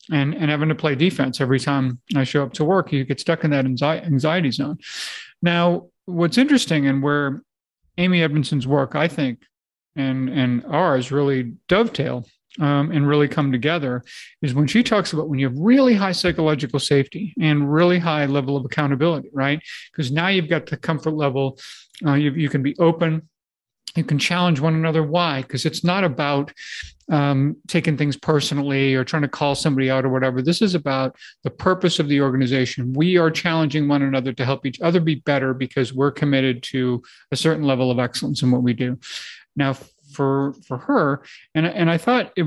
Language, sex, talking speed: English, male, 190 wpm